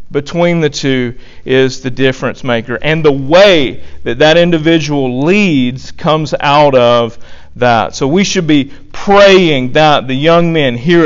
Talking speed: 150 wpm